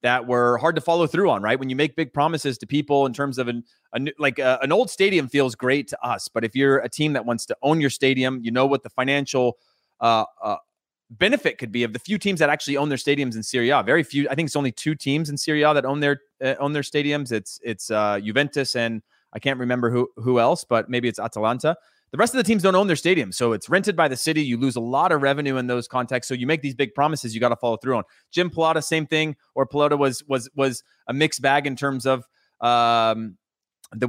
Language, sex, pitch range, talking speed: English, male, 120-145 Hz, 255 wpm